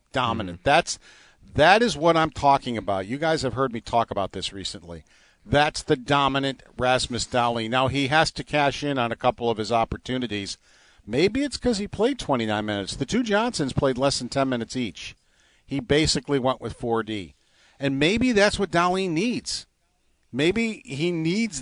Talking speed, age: 180 wpm, 50-69